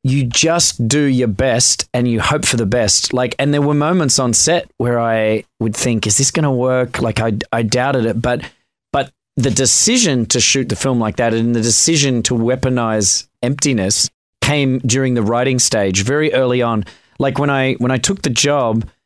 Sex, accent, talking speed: male, Australian, 200 wpm